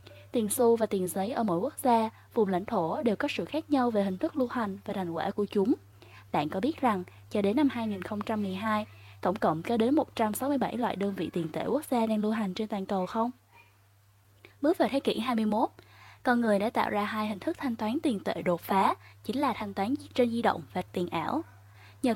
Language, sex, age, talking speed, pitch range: Vietnamese, female, 10-29, 225 wpm, 185-250 Hz